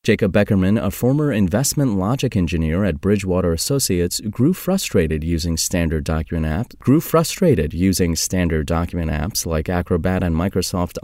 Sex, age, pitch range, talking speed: male, 30-49, 85-115 Hz, 140 wpm